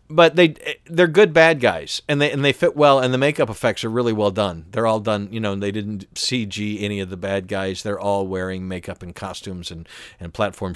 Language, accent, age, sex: English, American, 50-69, male